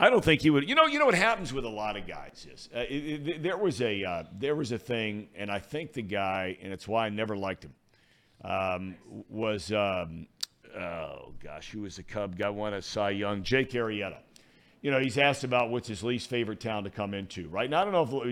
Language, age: English, 50-69